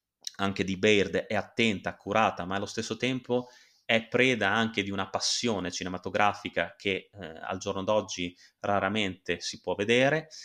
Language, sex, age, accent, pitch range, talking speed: Italian, male, 20-39, native, 95-110 Hz, 150 wpm